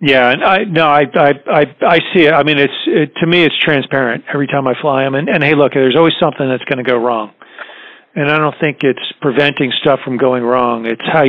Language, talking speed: English, 240 wpm